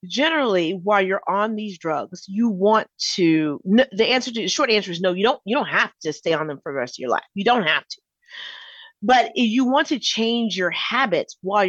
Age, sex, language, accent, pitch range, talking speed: 40-59, female, English, American, 170-220 Hz, 230 wpm